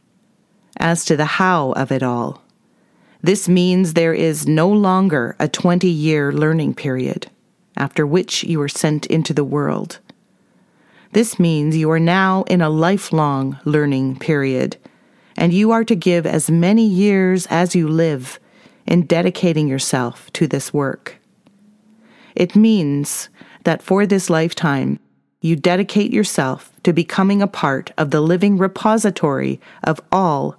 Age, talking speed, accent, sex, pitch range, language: 40-59, 140 wpm, American, female, 150-190 Hz, English